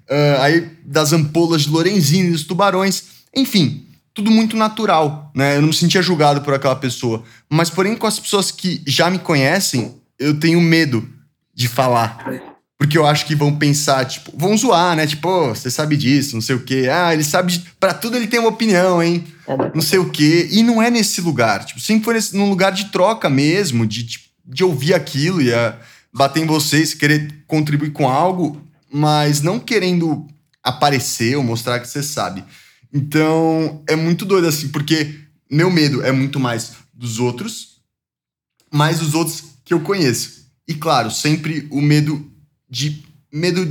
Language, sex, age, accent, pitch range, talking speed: Portuguese, male, 20-39, Brazilian, 135-170 Hz, 180 wpm